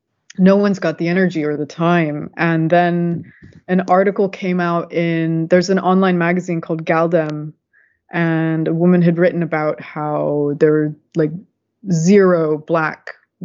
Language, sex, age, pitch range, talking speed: English, female, 20-39, 160-180 Hz, 145 wpm